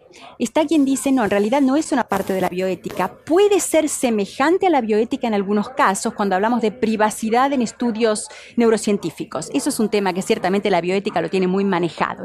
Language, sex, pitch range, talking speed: Spanish, female, 195-270 Hz, 200 wpm